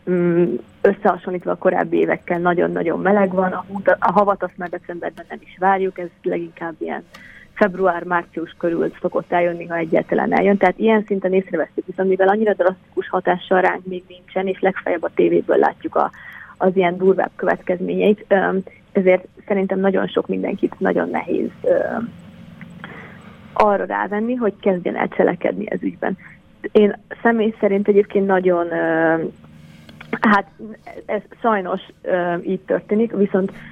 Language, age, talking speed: Hungarian, 30-49, 125 wpm